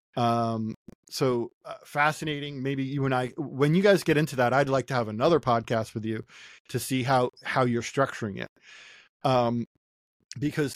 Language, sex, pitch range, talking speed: English, male, 120-155 Hz, 175 wpm